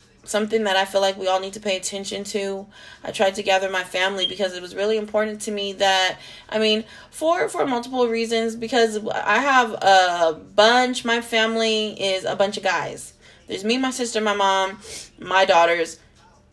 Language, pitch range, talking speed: English, 180-210 Hz, 190 wpm